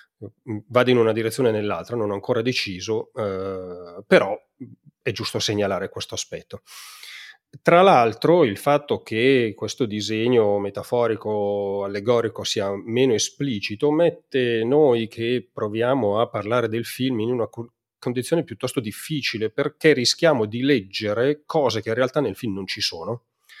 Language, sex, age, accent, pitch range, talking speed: Italian, male, 30-49, native, 110-140 Hz, 140 wpm